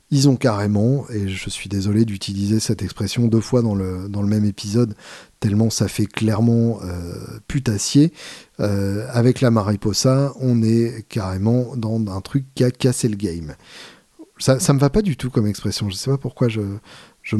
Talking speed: 185 wpm